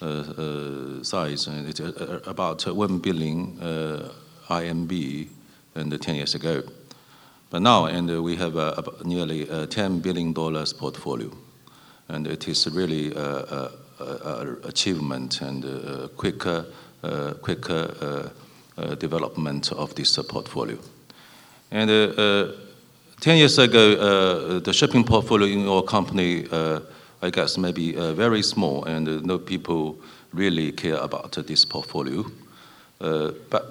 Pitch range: 80-95 Hz